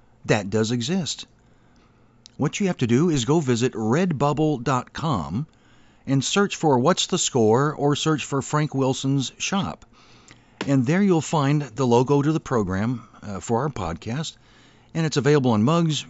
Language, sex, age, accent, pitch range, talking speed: English, male, 50-69, American, 115-155 Hz, 155 wpm